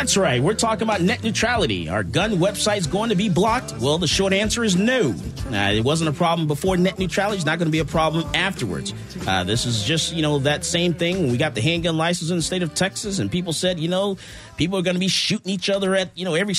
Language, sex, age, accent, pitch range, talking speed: English, male, 30-49, American, 130-180 Hz, 260 wpm